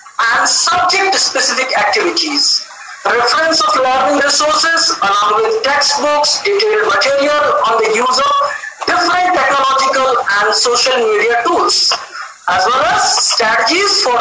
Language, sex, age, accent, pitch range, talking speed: English, female, 50-69, Indian, 260-345 Hz, 115 wpm